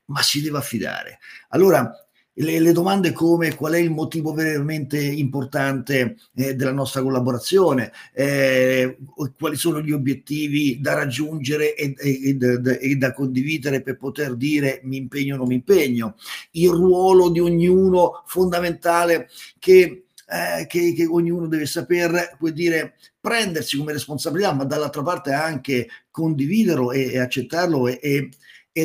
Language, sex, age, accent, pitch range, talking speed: Italian, male, 50-69, native, 135-175 Hz, 145 wpm